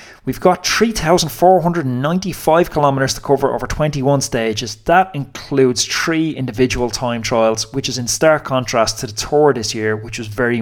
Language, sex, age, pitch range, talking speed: English, male, 20-39, 110-140 Hz, 160 wpm